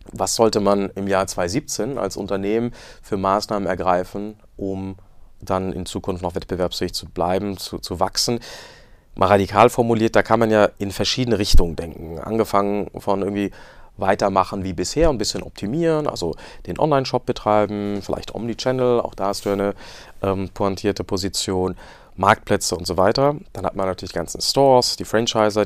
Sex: male